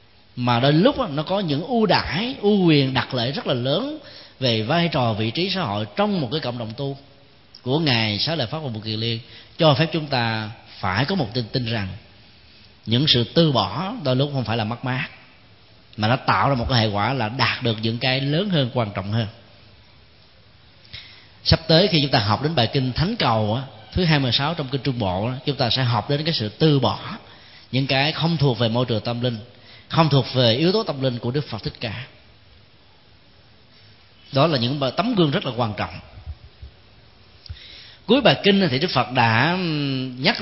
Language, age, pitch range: Vietnamese, 20-39, 115-155 Hz